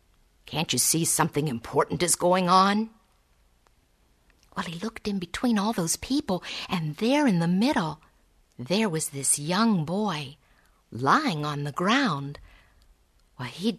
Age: 50-69